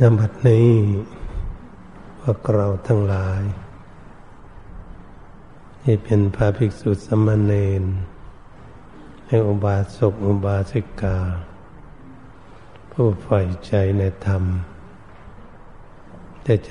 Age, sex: 60-79, male